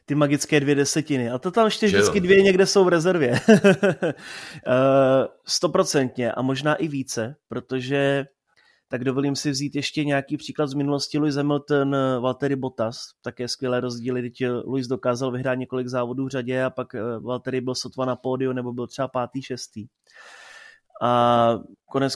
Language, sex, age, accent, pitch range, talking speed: Czech, male, 20-39, native, 125-150 Hz, 155 wpm